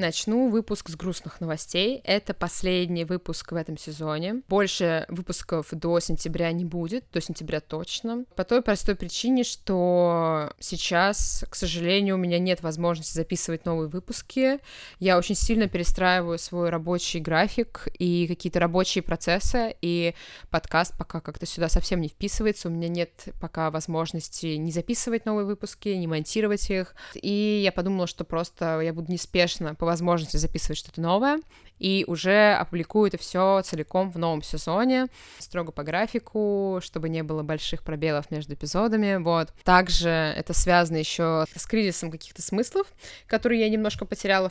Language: Russian